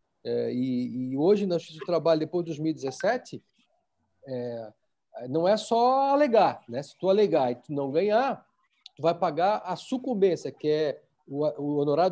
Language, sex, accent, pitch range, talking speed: Portuguese, male, Brazilian, 140-200 Hz, 160 wpm